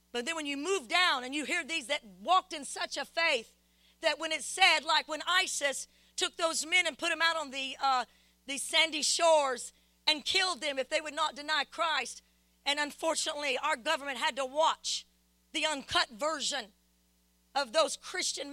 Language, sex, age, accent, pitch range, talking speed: English, female, 40-59, American, 255-320 Hz, 185 wpm